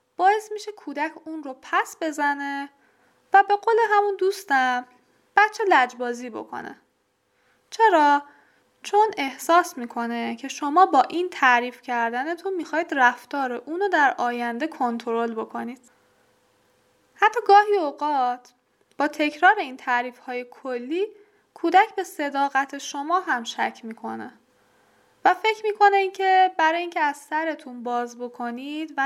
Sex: female